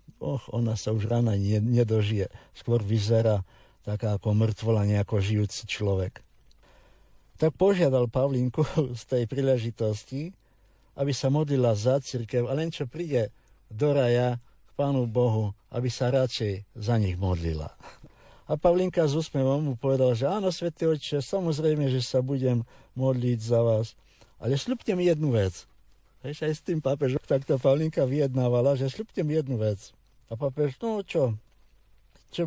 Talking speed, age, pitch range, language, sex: 145 wpm, 60-79, 110-140 Hz, Slovak, male